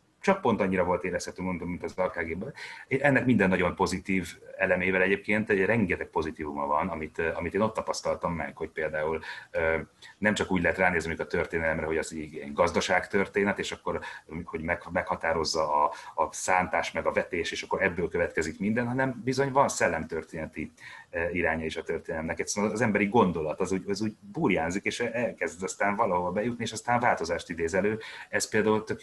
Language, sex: Hungarian, male